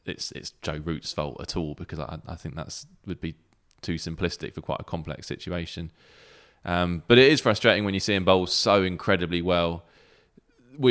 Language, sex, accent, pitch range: English, male, British, 85-95 Hz